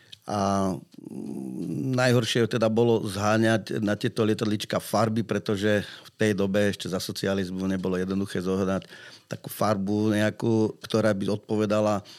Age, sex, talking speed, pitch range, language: 40-59, male, 125 wpm, 100-110 Hz, Slovak